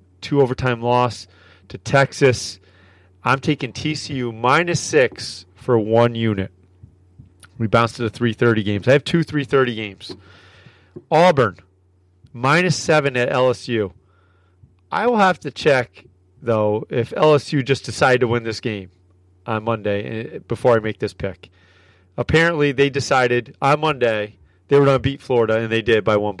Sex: male